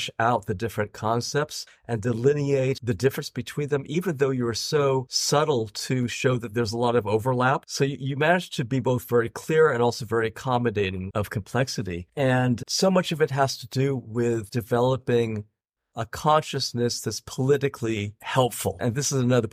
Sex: male